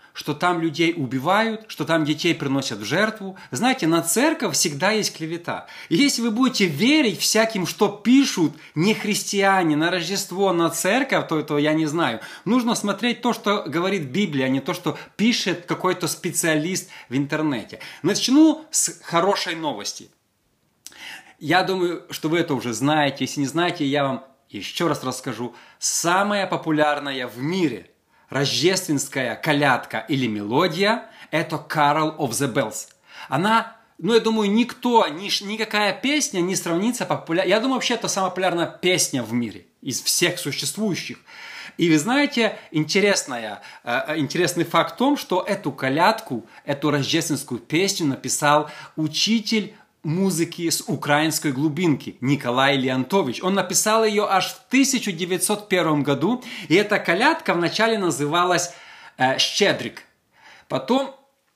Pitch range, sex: 150-210 Hz, male